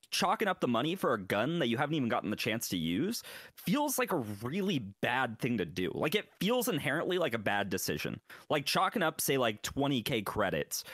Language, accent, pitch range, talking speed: English, American, 125-195 Hz, 215 wpm